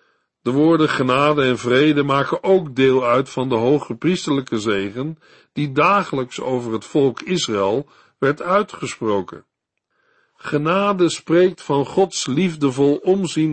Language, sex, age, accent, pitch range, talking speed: Dutch, male, 50-69, Dutch, 125-170 Hz, 125 wpm